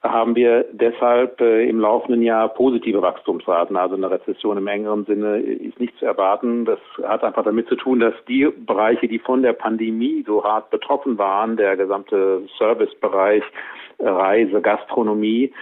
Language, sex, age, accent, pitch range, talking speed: German, male, 50-69, German, 105-125 Hz, 160 wpm